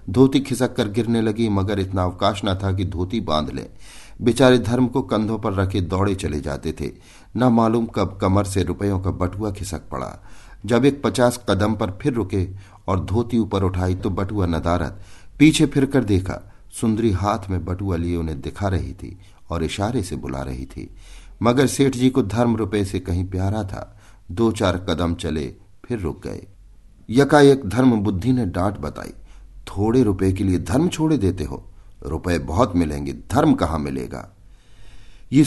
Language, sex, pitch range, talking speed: Hindi, male, 85-110 Hz, 180 wpm